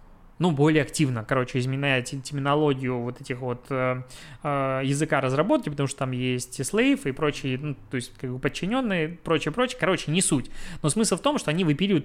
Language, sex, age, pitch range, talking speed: Russian, male, 20-39, 130-160 Hz, 185 wpm